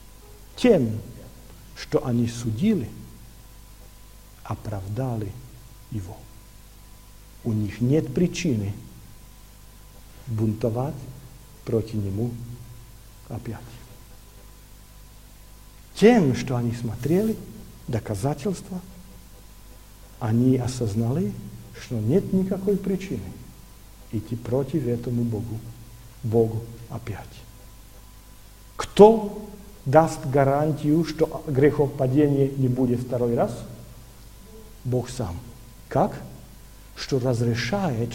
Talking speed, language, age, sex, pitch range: 70 wpm, Russian, 50-69, male, 110-150 Hz